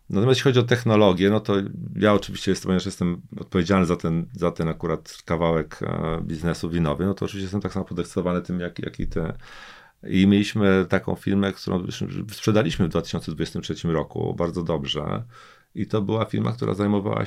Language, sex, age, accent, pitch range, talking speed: Polish, male, 40-59, native, 90-105 Hz, 165 wpm